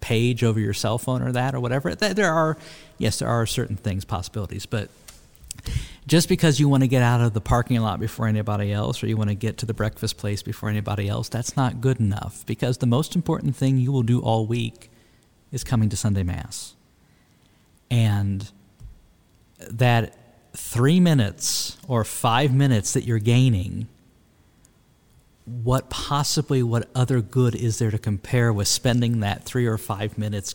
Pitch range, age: 110-135 Hz, 50-69